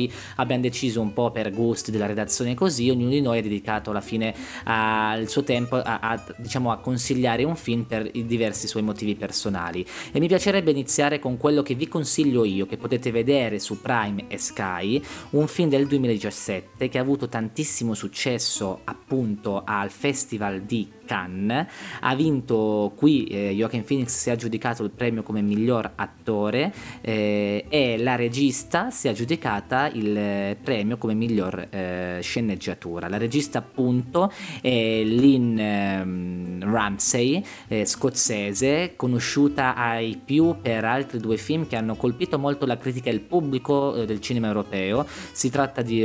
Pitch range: 105-130 Hz